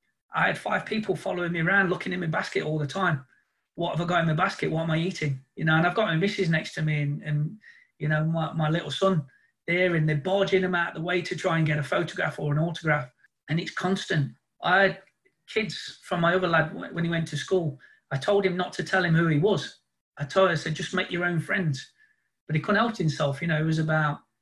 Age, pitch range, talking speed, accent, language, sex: 30-49, 150-180 Hz, 260 wpm, British, English, male